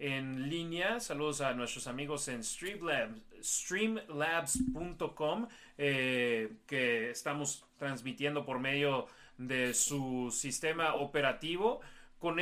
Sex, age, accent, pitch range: male, 30-49, Mexican, 140-190 Hz